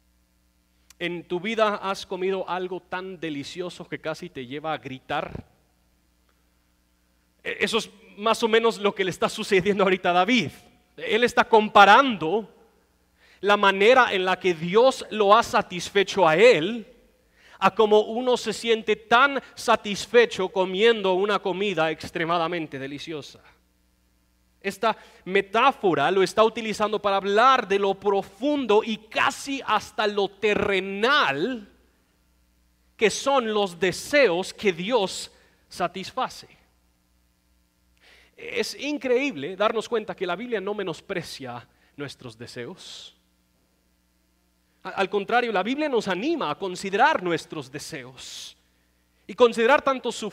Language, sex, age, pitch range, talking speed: Spanish, male, 30-49, 140-225 Hz, 120 wpm